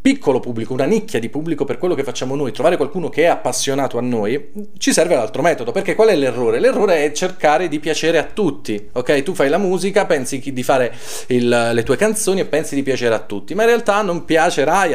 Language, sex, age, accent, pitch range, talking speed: Italian, male, 30-49, native, 125-175 Hz, 220 wpm